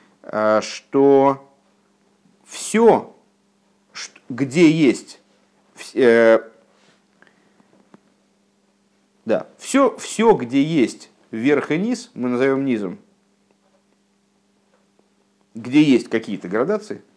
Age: 50-69